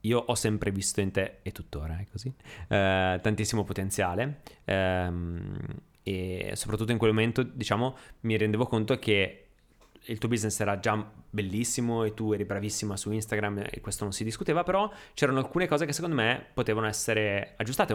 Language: Italian